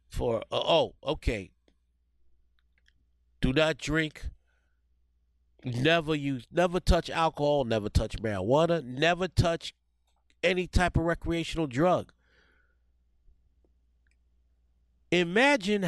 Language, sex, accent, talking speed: English, male, American, 85 wpm